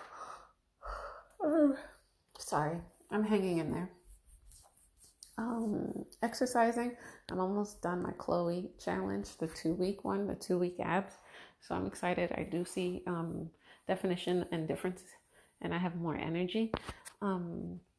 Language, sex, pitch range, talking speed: English, female, 170-205 Hz, 115 wpm